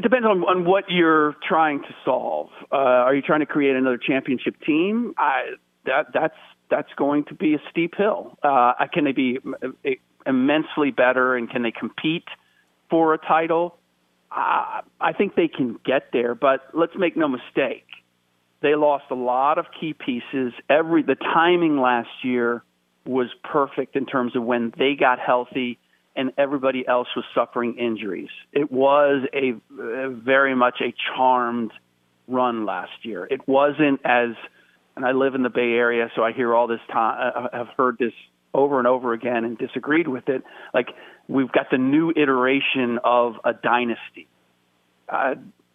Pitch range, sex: 120-150 Hz, male